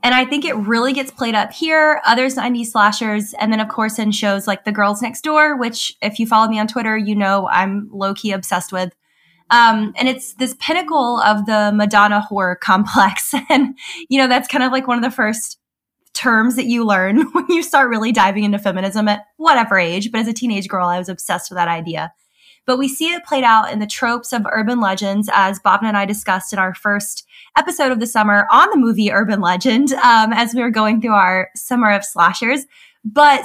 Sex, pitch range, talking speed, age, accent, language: female, 195-250 Hz, 220 wpm, 10-29, American, English